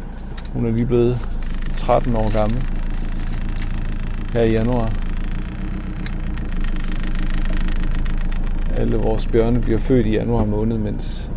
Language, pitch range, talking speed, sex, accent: Danish, 105-125 Hz, 100 wpm, male, native